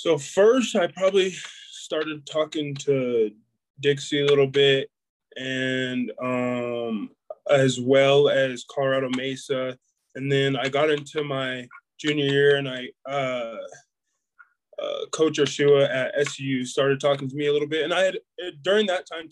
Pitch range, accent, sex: 135-150 Hz, American, male